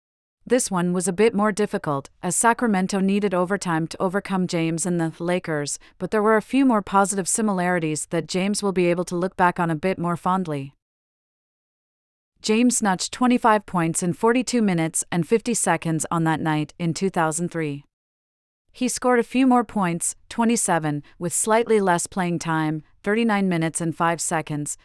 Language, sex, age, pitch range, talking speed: English, female, 40-59, 165-205 Hz, 170 wpm